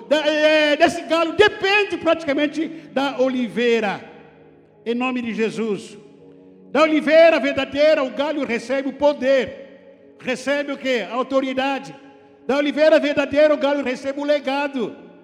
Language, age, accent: Portuguese, 60-79, Brazilian